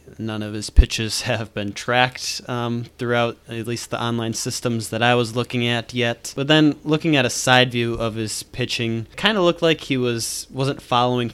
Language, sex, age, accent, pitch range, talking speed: English, male, 20-39, American, 110-130 Hz, 200 wpm